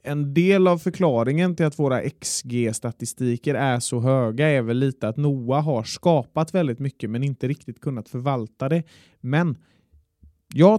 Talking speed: 155 wpm